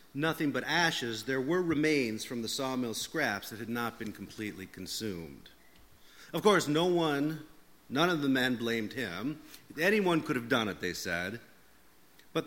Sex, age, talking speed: male, 40-59, 165 wpm